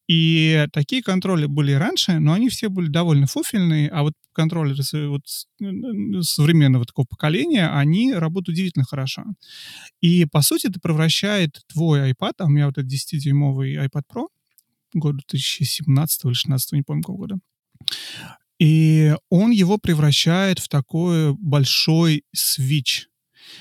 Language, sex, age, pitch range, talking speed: Russian, male, 30-49, 145-190 Hz, 135 wpm